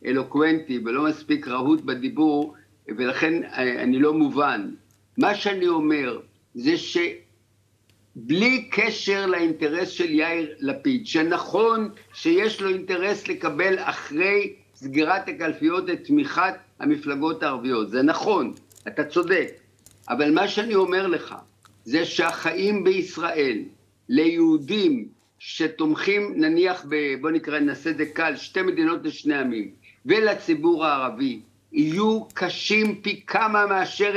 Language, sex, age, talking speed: Hebrew, male, 60-79, 110 wpm